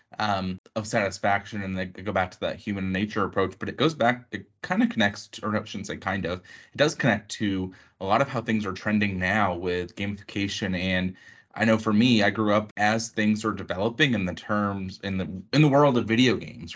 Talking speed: 235 wpm